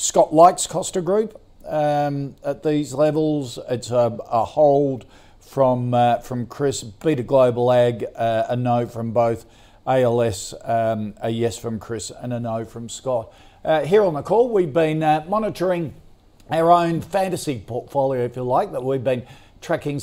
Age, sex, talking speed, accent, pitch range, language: 50-69, male, 165 wpm, Australian, 120-150 Hz, English